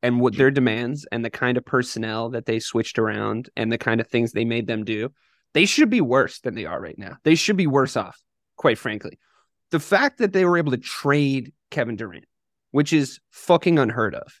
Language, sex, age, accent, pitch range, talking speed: English, male, 20-39, American, 120-185 Hz, 220 wpm